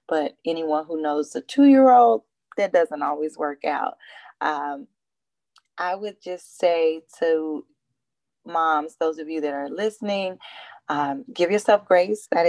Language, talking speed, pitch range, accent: English, 140 wpm, 165-215 Hz, American